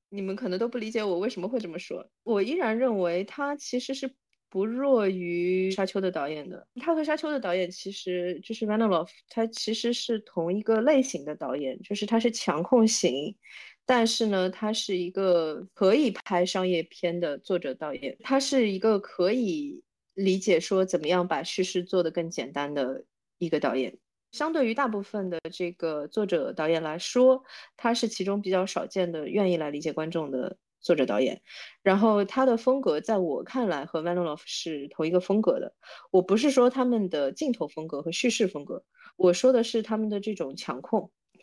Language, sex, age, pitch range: Chinese, female, 30-49, 175-230 Hz